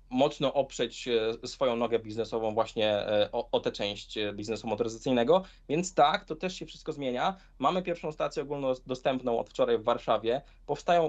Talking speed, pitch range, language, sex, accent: 150 wpm, 125-175 Hz, Polish, male, native